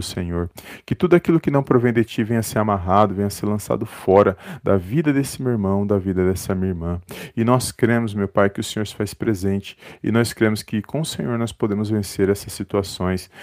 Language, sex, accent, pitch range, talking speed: Portuguese, male, Brazilian, 100-120 Hz, 230 wpm